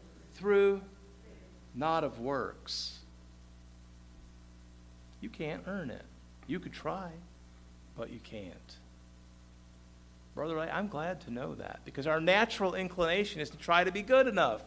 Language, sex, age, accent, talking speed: English, male, 50-69, American, 125 wpm